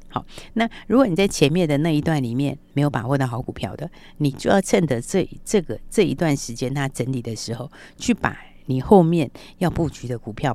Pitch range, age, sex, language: 120-160 Hz, 50-69, female, Chinese